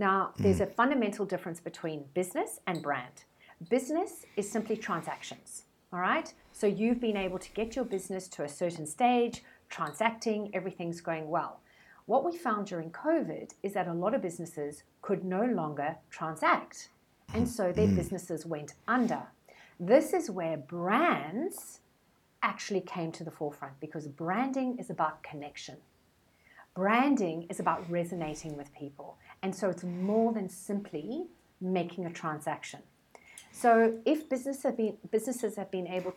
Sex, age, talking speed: female, 40-59, 145 wpm